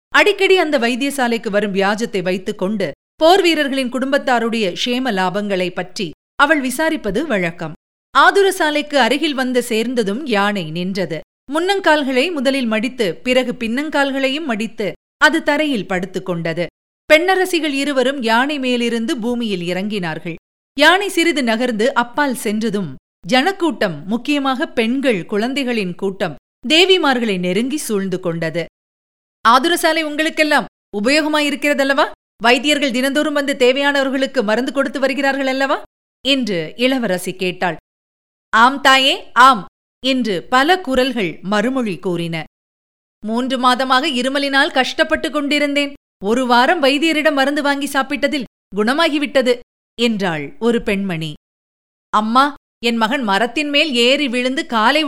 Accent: native